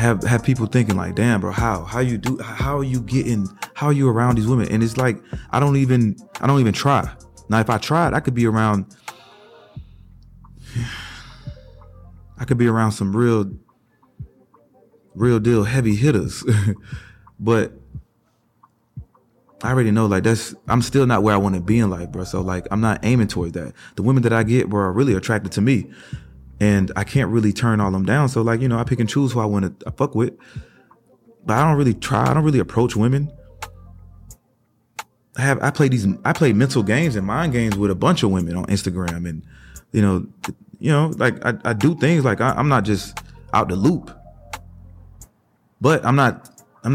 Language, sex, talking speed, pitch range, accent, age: English, male, 200 wpm, 100-130 Hz, American, 30-49